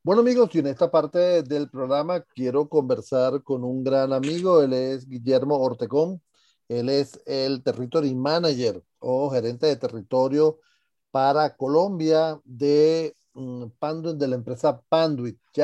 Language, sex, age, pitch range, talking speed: Spanish, male, 40-59, 135-170 Hz, 135 wpm